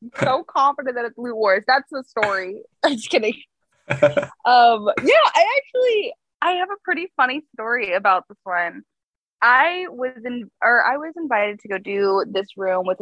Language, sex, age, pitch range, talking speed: English, female, 20-39, 190-270 Hz, 175 wpm